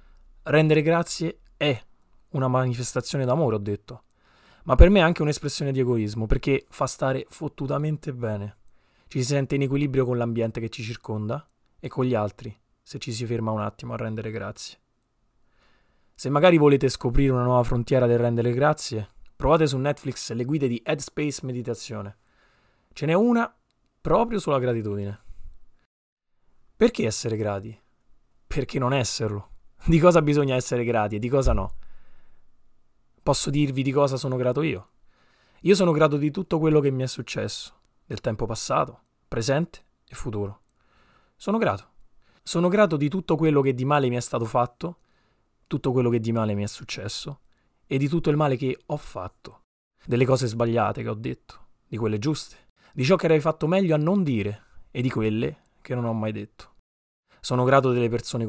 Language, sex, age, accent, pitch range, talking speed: Italian, male, 20-39, native, 115-145 Hz, 170 wpm